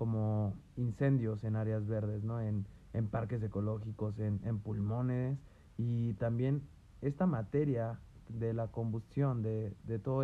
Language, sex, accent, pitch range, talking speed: Spanish, male, Mexican, 110-135 Hz, 135 wpm